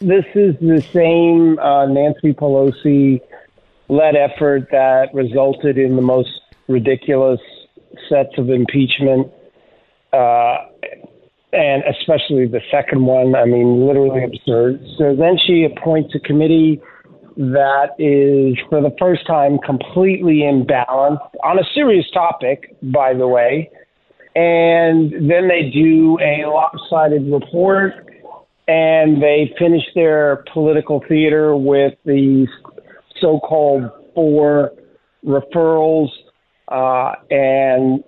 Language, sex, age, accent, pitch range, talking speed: English, male, 40-59, American, 135-160 Hz, 110 wpm